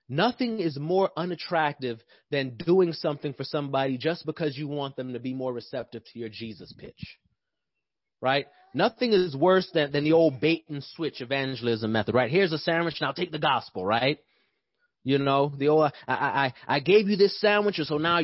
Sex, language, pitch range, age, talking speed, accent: male, English, 140-185 Hz, 30-49, 190 wpm, American